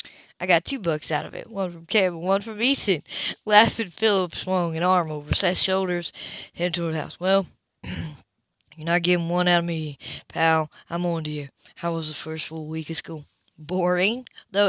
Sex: female